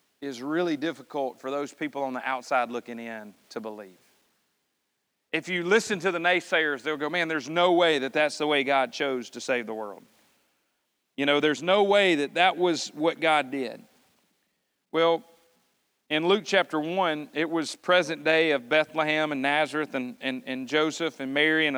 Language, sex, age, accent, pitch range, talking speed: English, male, 40-59, American, 145-190 Hz, 180 wpm